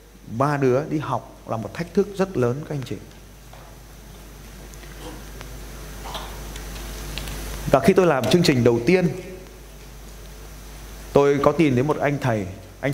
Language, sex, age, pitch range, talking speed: Vietnamese, male, 20-39, 115-160 Hz, 135 wpm